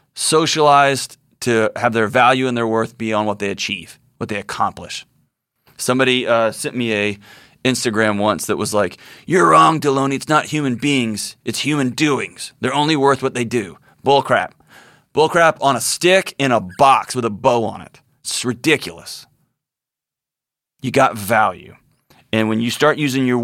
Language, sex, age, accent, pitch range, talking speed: English, male, 30-49, American, 105-130 Hz, 175 wpm